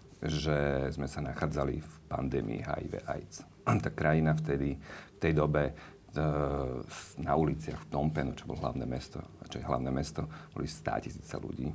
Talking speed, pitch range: 135 wpm, 70-80 Hz